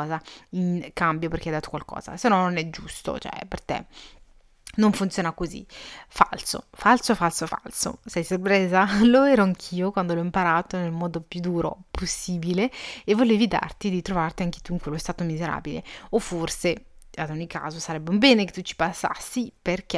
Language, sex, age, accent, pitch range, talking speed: Italian, female, 30-49, native, 170-210 Hz, 175 wpm